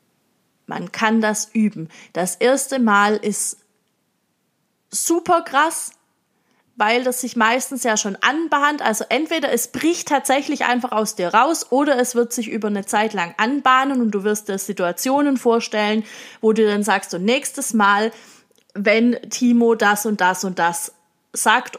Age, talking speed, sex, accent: 30-49, 150 wpm, female, German